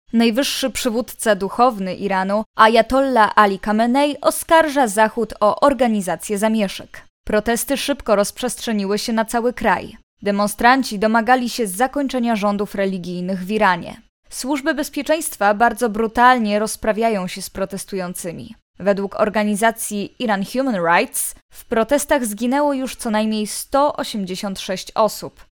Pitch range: 205-260 Hz